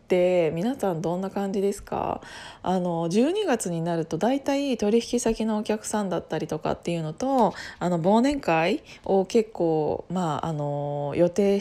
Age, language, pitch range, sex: 20-39, Japanese, 170-245 Hz, female